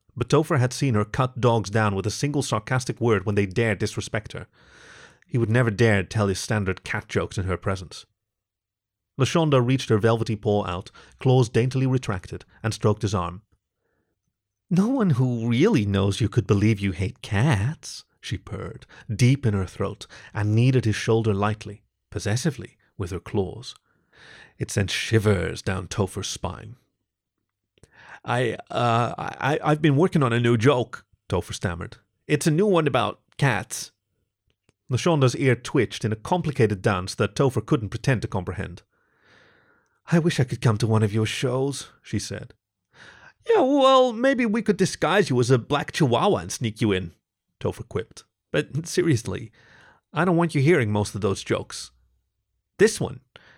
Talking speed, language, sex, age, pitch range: 165 wpm, English, male, 30-49, 105-130 Hz